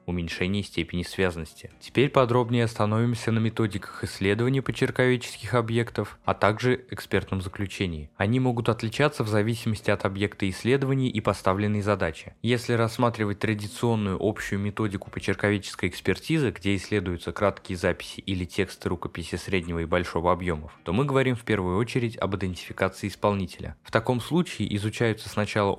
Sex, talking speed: male, 135 wpm